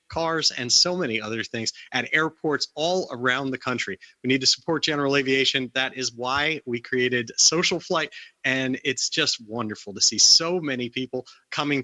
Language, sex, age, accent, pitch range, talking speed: English, male, 30-49, American, 125-160 Hz, 180 wpm